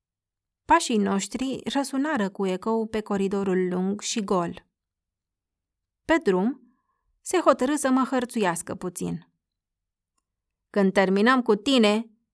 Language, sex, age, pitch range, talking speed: Romanian, female, 30-49, 170-230 Hz, 105 wpm